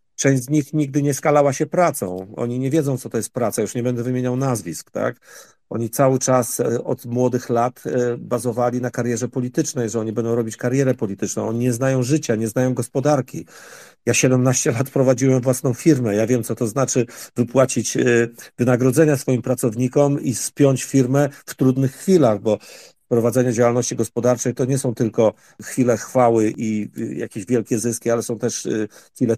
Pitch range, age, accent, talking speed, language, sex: 120-135 Hz, 50-69, native, 165 wpm, Polish, male